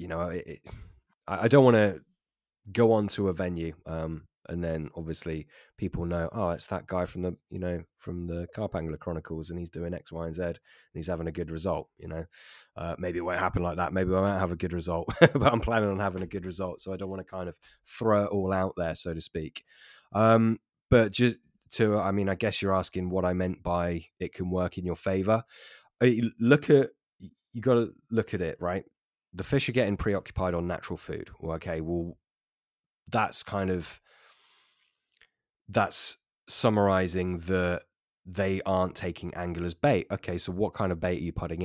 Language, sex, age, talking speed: English, male, 20-39, 200 wpm